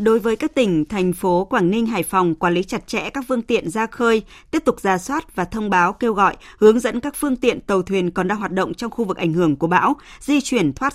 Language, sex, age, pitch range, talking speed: Vietnamese, female, 20-39, 175-230 Hz, 270 wpm